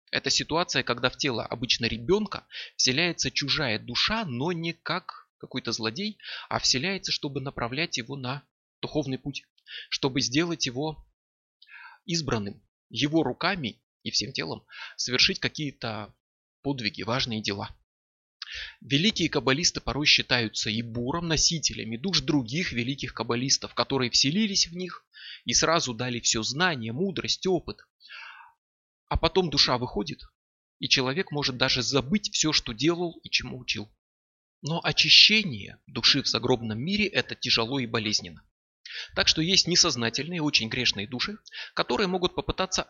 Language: Russian